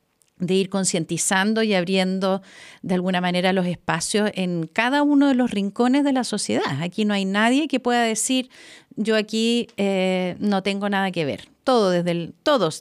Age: 50-69